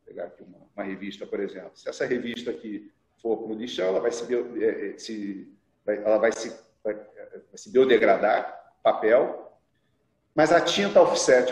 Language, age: Portuguese, 40-59